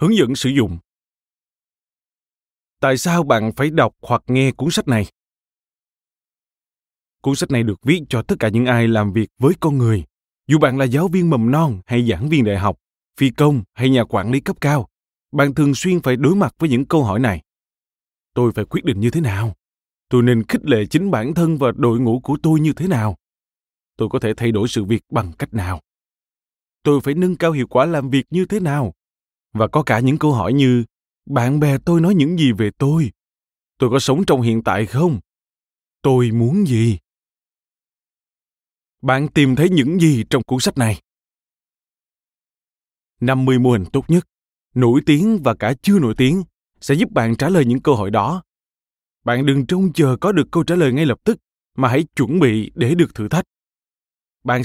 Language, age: Vietnamese, 20-39